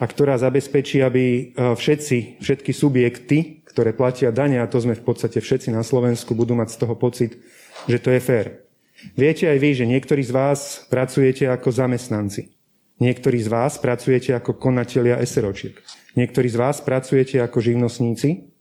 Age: 30-49